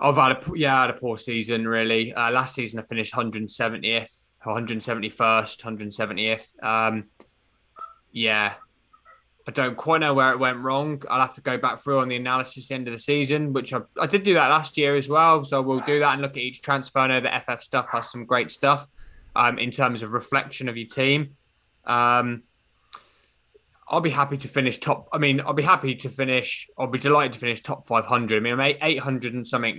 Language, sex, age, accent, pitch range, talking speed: English, male, 20-39, British, 115-140 Hz, 215 wpm